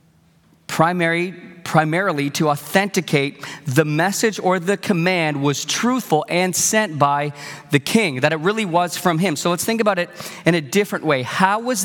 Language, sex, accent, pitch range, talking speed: English, male, American, 160-200 Hz, 160 wpm